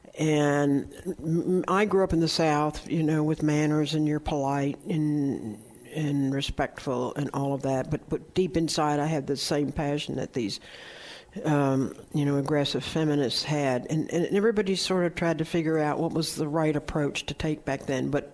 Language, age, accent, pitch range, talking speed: English, 60-79, American, 145-170 Hz, 185 wpm